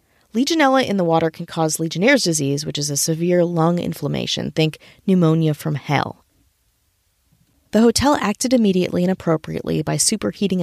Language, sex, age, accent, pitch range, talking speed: English, female, 30-49, American, 160-215 Hz, 145 wpm